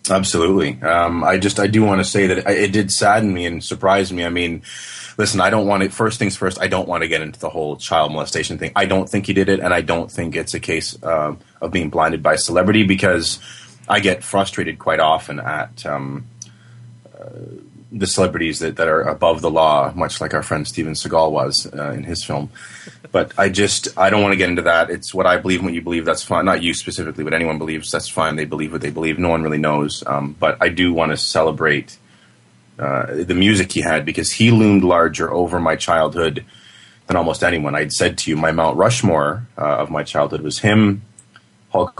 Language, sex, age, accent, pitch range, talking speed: English, male, 30-49, American, 75-100 Hz, 225 wpm